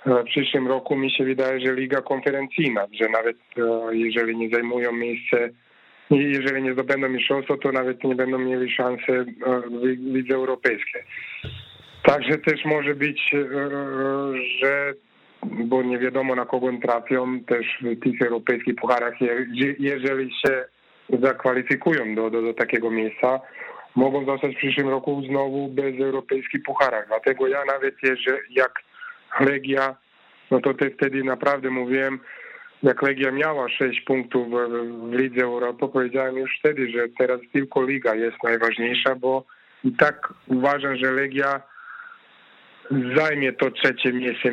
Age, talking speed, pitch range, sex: 20-39, 145 wpm, 120-135 Hz, male